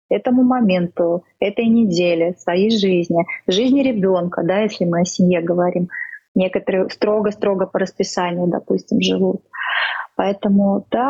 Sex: female